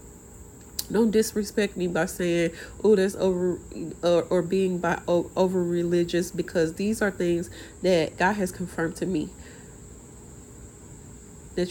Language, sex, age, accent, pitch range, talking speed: English, female, 30-49, American, 175-210 Hz, 130 wpm